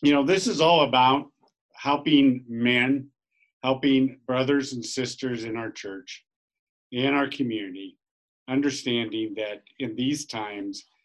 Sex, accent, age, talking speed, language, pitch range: male, American, 50-69, 125 wpm, English, 110-140 Hz